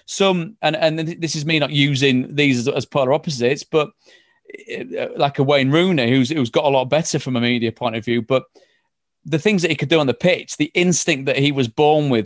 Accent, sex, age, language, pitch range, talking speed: British, male, 30-49, English, 130-165 Hz, 230 wpm